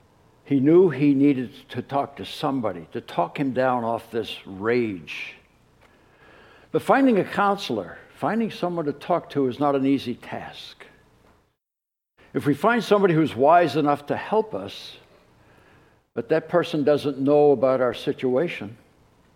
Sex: male